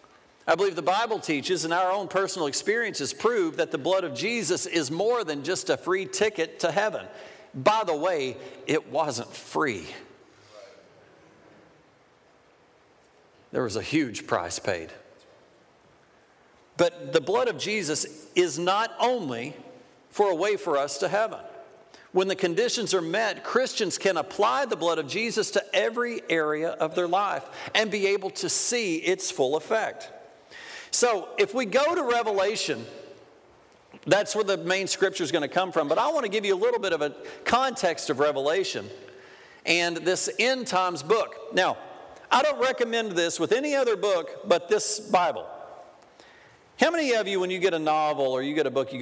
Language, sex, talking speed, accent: Italian, male, 170 wpm, American